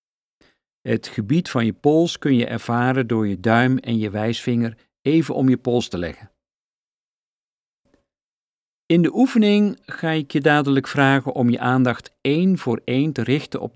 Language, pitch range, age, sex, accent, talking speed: Dutch, 115-155 Hz, 50-69, male, Dutch, 160 wpm